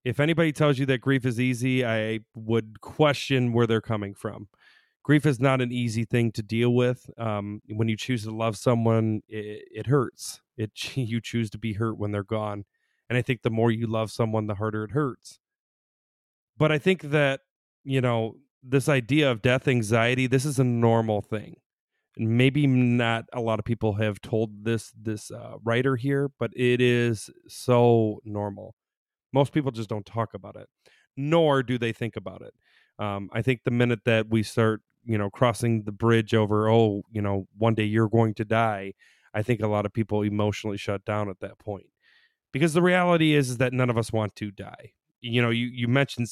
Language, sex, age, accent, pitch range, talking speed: English, male, 30-49, American, 110-125 Hz, 200 wpm